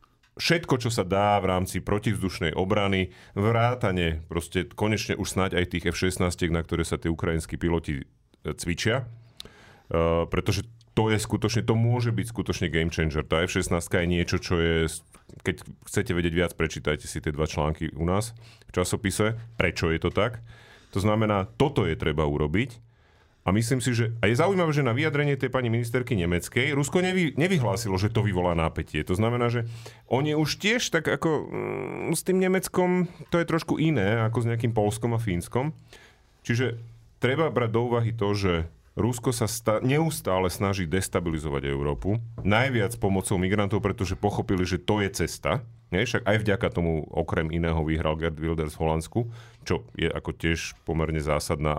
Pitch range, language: 85-115 Hz, Slovak